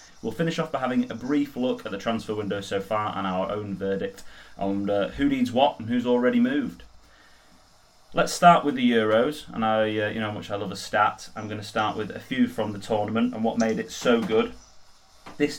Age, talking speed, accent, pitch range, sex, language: 20-39, 230 wpm, British, 100-125 Hz, male, English